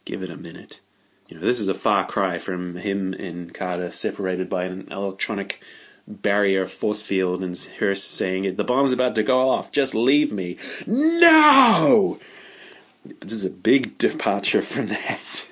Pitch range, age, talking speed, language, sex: 100-130 Hz, 30-49, 165 wpm, English, male